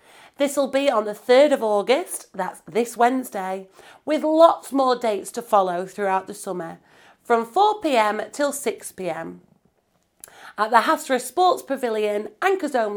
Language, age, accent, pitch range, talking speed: English, 40-59, British, 195-285 Hz, 145 wpm